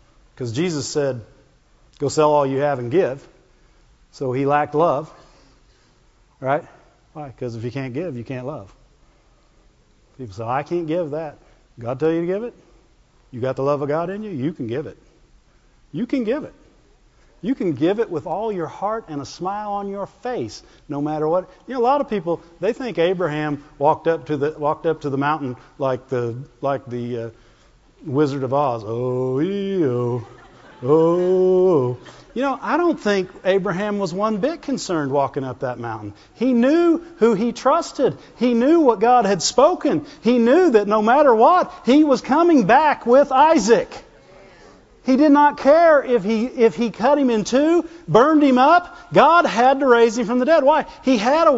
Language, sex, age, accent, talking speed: English, male, 50-69, American, 190 wpm